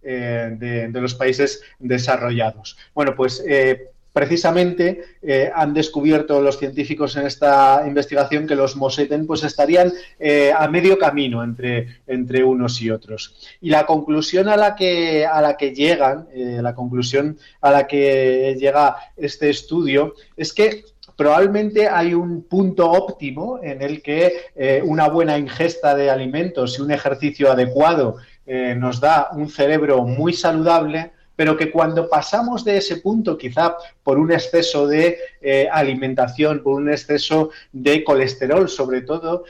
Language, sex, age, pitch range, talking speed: Spanish, male, 30-49, 135-165 Hz, 150 wpm